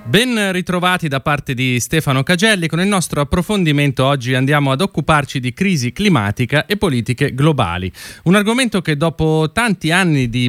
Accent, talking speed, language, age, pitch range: native, 160 wpm, Italian, 30-49, 125-170 Hz